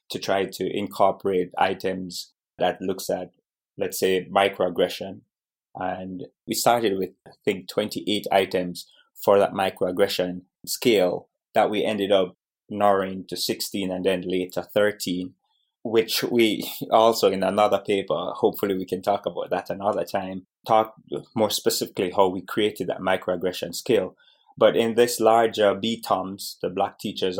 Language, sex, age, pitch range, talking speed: English, male, 20-39, 95-110 Hz, 140 wpm